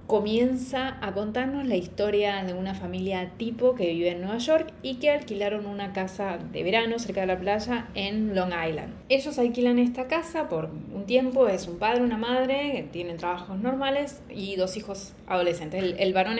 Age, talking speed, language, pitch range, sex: 20-39, 185 wpm, Spanish, 175-225 Hz, female